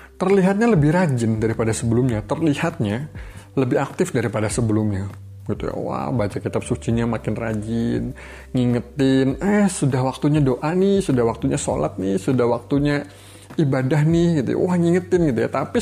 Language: Indonesian